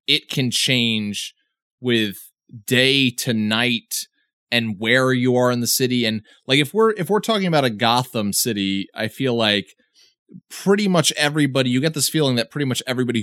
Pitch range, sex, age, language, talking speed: 115-145 Hz, male, 20-39, English, 175 wpm